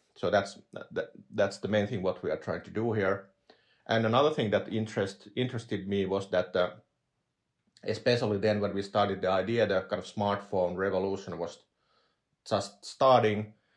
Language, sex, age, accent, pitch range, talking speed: Finnish, male, 30-49, native, 100-110 Hz, 170 wpm